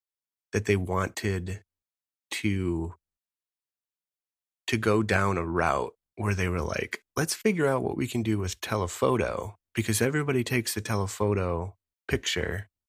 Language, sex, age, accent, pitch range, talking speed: English, male, 30-49, American, 80-105 Hz, 130 wpm